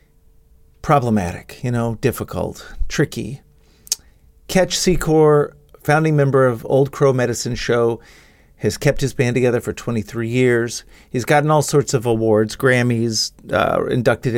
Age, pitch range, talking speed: 40-59, 115-140 Hz, 130 wpm